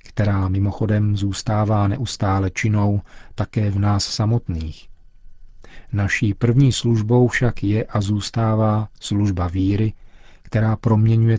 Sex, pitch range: male, 95-110 Hz